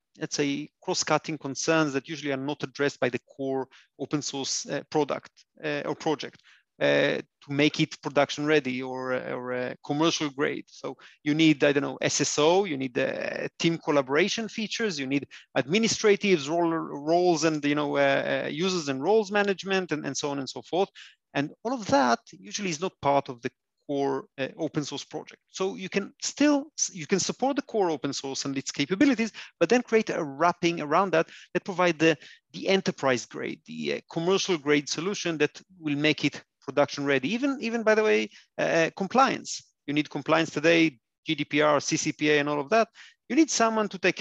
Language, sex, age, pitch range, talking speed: English, male, 30-49, 140-190 Hz, 185 wpm